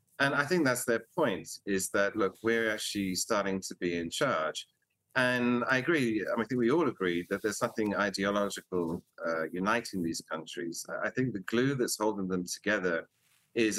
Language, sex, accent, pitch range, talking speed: English, male, British, 90-115 Hz, 185 wpm